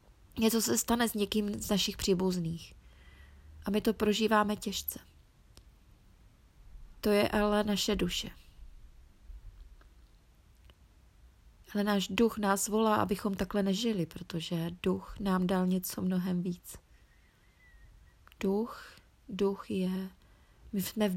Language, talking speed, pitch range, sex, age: Czech, 110 wpm, 170-210 Hz, female, 20-39